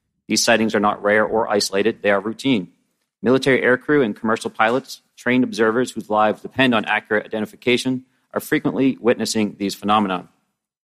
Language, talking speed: English, 155 wpm